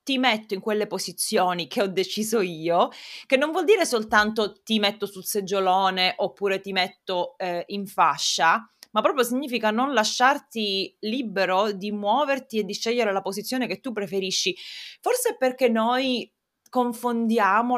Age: 20-39